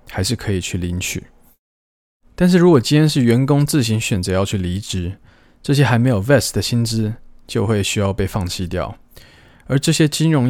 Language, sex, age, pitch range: Chinese, male, 20-39, 95-120 Hz